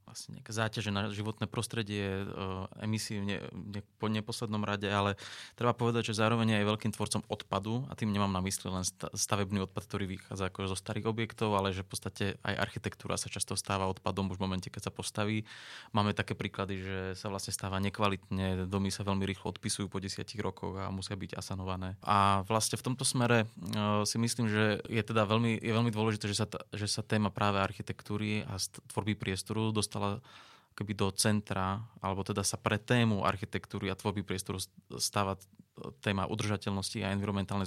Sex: male